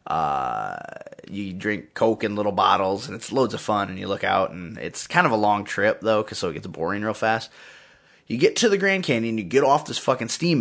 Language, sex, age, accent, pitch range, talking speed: English, male, 20-39, American, 100-150 Hz, 245 wpm